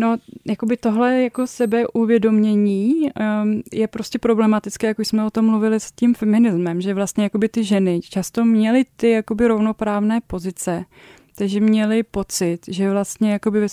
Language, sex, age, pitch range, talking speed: Czech, female, 20-39, 190-220 Hz, 145 wpm